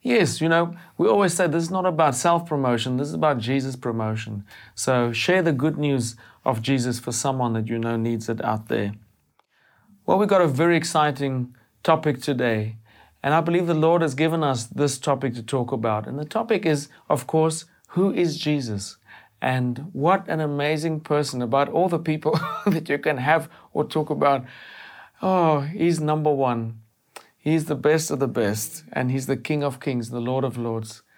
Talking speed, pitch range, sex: 190 wpm, 120-160 Hz, male